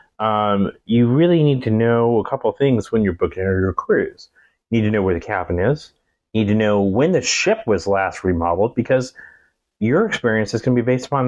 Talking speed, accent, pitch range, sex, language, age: 225 wpm, American, 95-115 Hz, male, English, 30-49